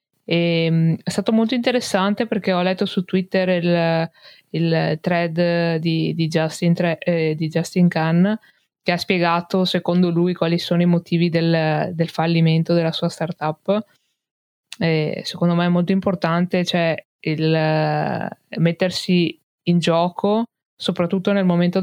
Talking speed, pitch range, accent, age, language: 125 wpm, 165-185 Hz, native, 20-39, Italian